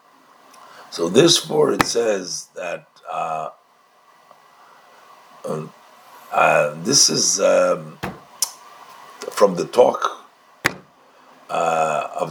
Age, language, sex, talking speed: 50-69, English, male, 80 wpm